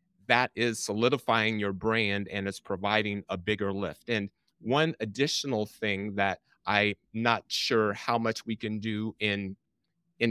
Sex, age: male, 30-49